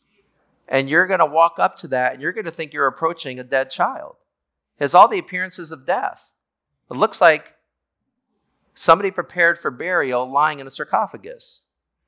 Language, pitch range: English, 125-170 Hz